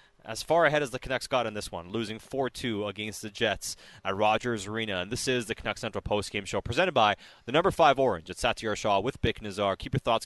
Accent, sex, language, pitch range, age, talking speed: American, male, English, 105-135 Hz, 30-49, 245 wpm